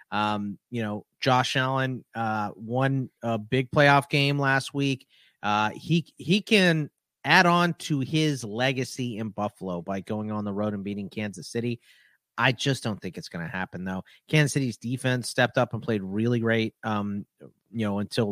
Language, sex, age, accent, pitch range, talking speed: English, male, 30-49, American, 105-140 Hz, 175 wpm